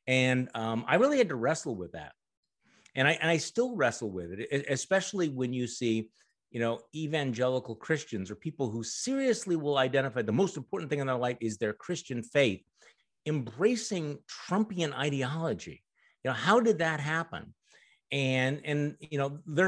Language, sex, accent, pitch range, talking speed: English, male, American, 105-140 Hz, 170 wpm